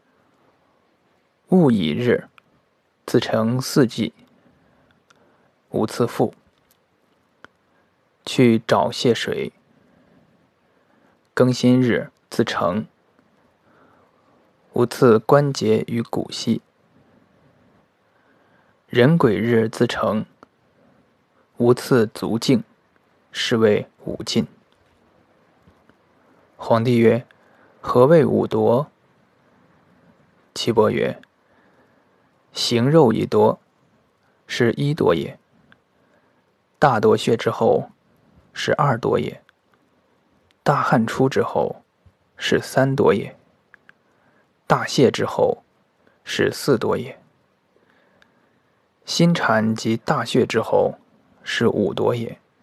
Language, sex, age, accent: Chinese, male, 20-39, native